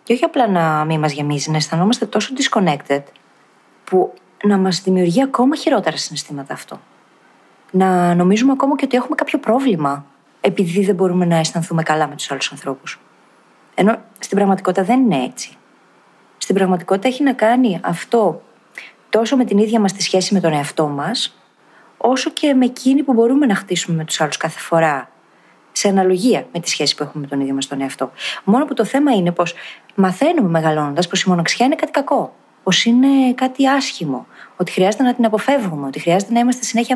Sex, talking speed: female, 185 wpm